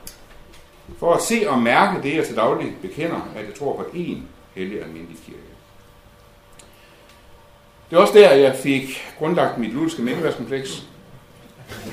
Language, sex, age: Danish, male, 60-79